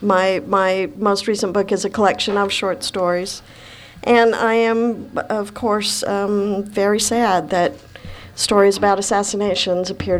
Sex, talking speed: female, 140 wpm